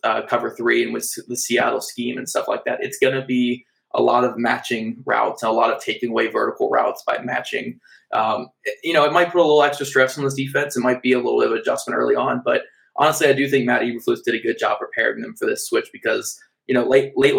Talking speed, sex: 260 wpm, male